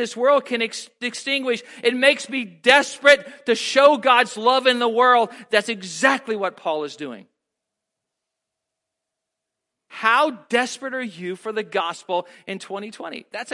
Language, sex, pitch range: English, male, 210-260 Hz